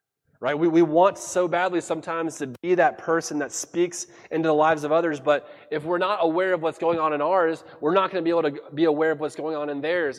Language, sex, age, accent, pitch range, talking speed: English, male, 20-39, American, 145-175 Hz, 260 wpm